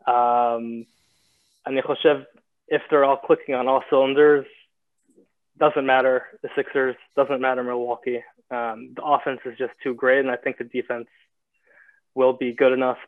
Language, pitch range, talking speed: Hebrew, 125-155 Hz, 150 wpm